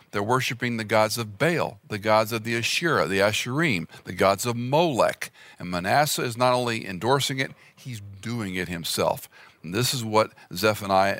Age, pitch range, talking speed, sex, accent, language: 50-69, 95-135 Hz, 175 wpm, male, American, English